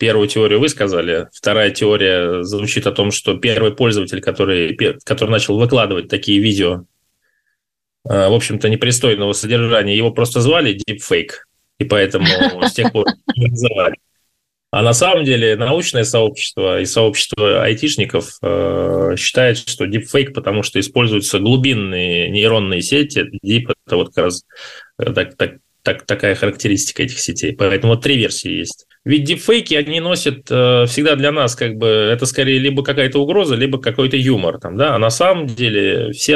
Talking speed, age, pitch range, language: 150 wpm, 20-39, 105-135 Hz, Russian